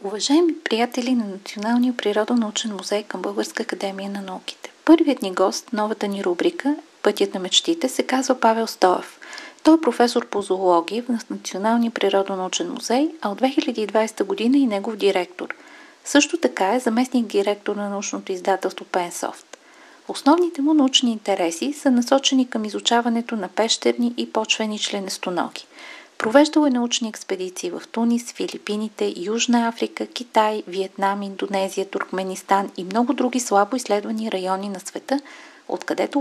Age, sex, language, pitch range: 40-59, female, Bulgarian, 200-260 Hz